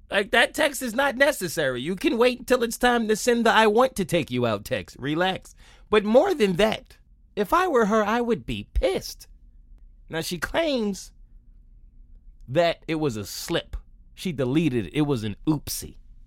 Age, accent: 20-39, American